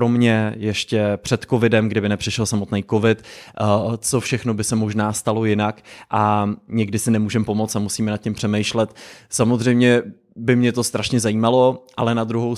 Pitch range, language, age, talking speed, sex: 110-125 Hz, English, 20-39, 165 wpm, male